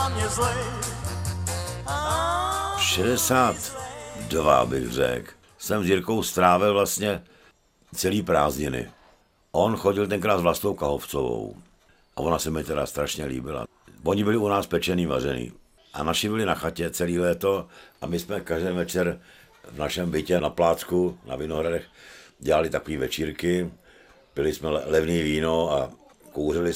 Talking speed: 130 wpm